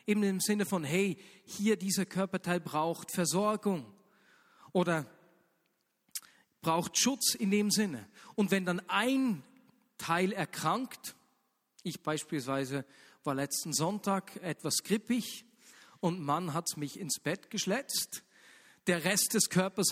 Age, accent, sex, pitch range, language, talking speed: 40-59, German, male, 160-210 Hz, German, 120 wpm